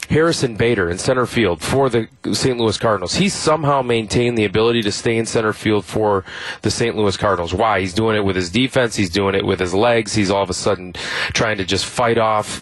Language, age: English, 30-49